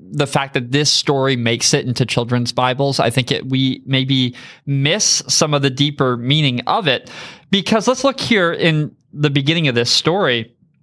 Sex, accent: male, American